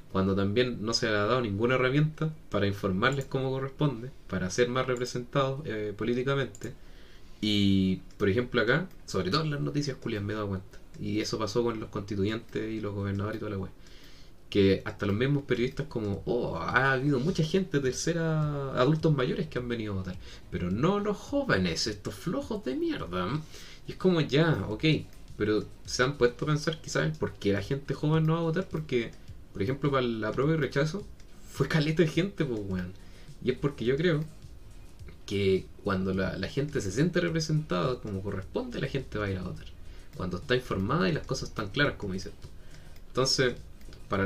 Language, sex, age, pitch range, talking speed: Spanish, male, 20-39, 100-150 Hz, 200 wpm